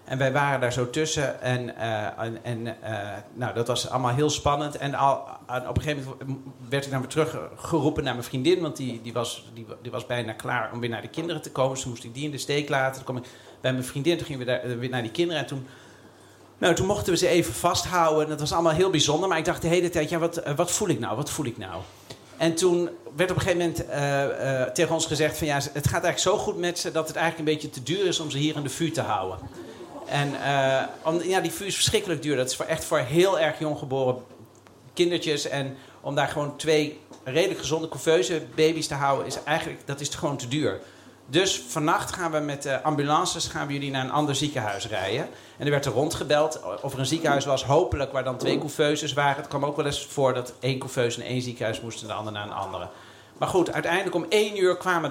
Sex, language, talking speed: male, Dutch, 250 wpm